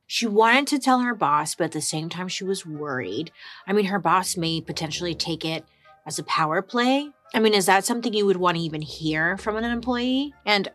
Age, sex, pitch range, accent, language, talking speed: 30-49, female, 155-220 Hz, American, English, 230 wpm